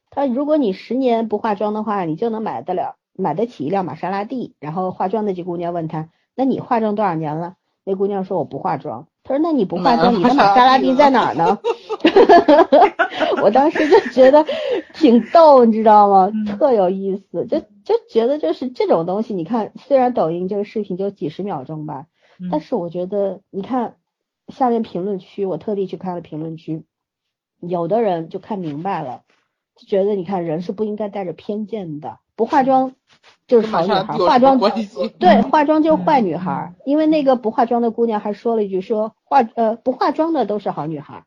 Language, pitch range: Chinese, 185-260 Hz